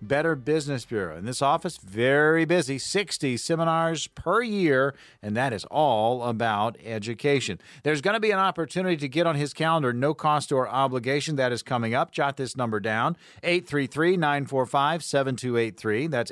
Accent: American